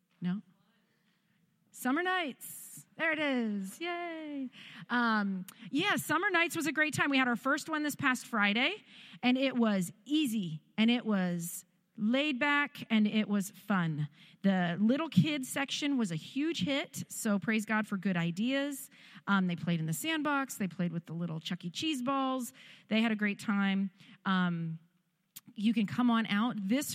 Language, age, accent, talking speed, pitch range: English, 40-59, American, 170 wpm, 185-250 Hz